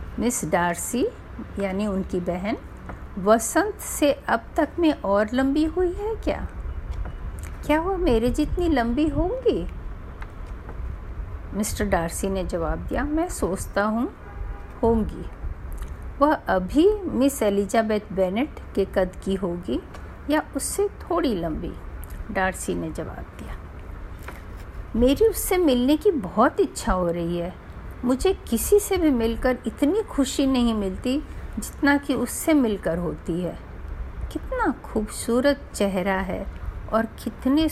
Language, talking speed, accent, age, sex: Hindi, 125 wpm, native, 50-69, female